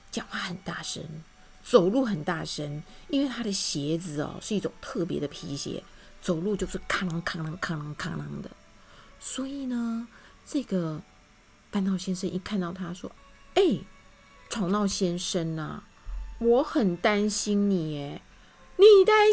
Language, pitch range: Chinese, 180-300 Hz